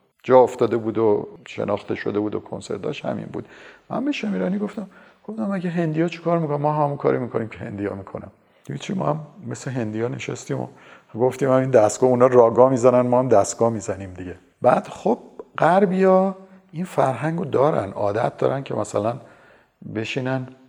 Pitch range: 110-155 Hz